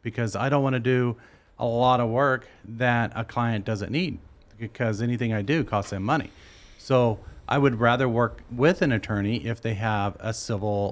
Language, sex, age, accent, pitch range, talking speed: English, male, 40-59, American, 105-135 Hz, 190 wpm